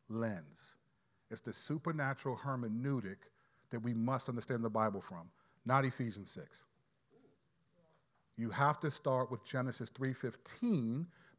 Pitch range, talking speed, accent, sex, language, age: 130-180 Hz, 115 wpm, American, male, English, 40-59